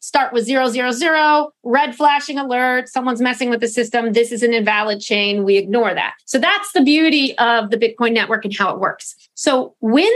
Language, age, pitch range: English, 30-49, 230-280 Hz